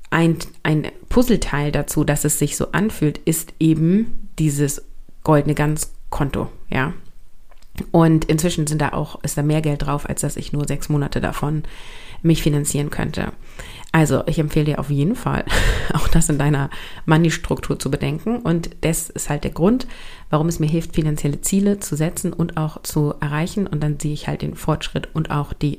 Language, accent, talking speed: German, German, 180 wpm